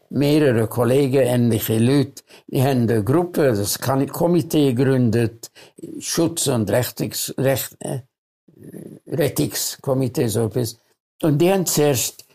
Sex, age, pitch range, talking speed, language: male, 60-79, 115-145 Hz, 95 wpm, German